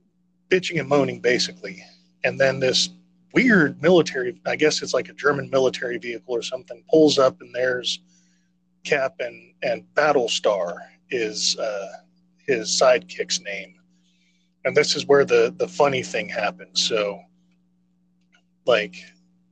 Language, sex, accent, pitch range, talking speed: English, male, American, 115-180 Hz, 135 wpm